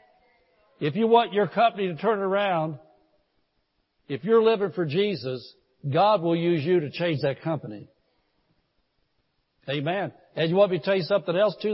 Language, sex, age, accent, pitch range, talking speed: English, male, 60-79, American, 150-195 Hz, 165 wpm